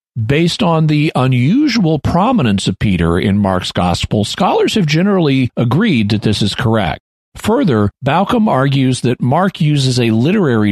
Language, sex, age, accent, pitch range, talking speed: English, male, 40-59, American, 100-140 Hz, 145 wpm